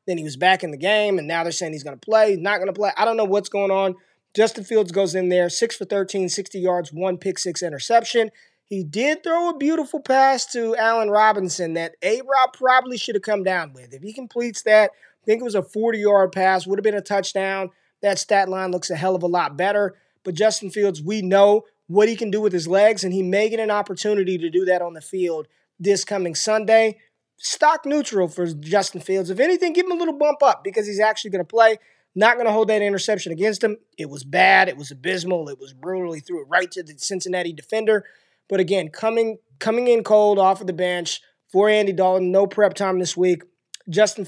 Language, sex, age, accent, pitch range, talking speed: English, male, 20-39, American, 180-215 Hz, 235 wpm